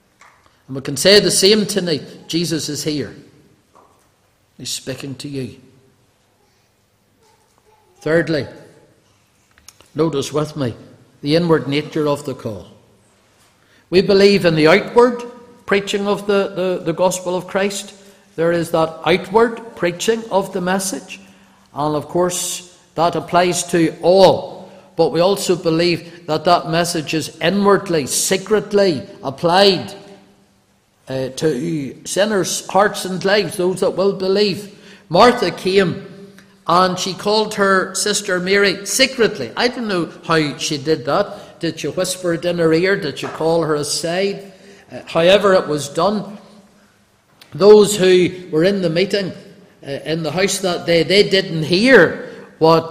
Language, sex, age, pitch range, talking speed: English, male, 50-69, 150-195 Hz, 135 wpm